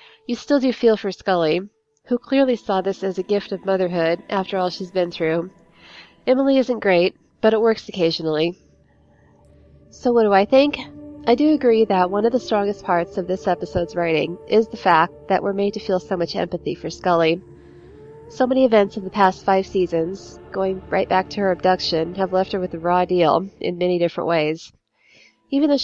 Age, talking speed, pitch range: 30-49, 195 wpm, 175-210 Hz